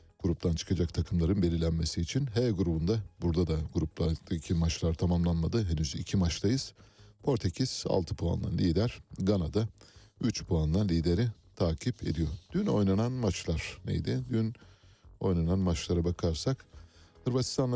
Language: Turkish